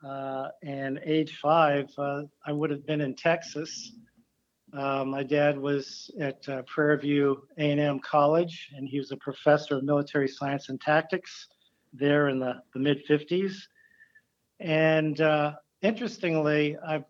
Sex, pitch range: male, 135-170 Hz